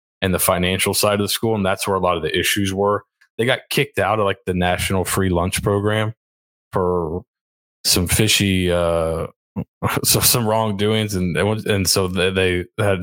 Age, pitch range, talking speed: 20-39, 85-105 Hz, 195 wpm